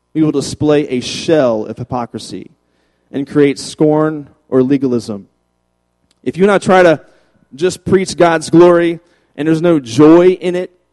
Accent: American